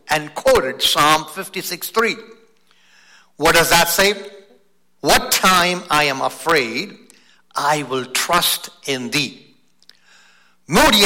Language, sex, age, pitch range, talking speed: English, male, 60-79, 185-285 Hz, 105 wpm